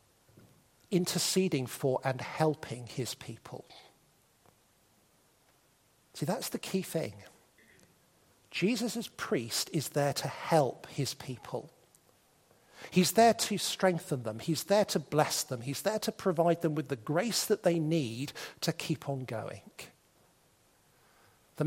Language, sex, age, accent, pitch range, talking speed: English, male, 50-69, British, 140-200 Hz, 125 wpm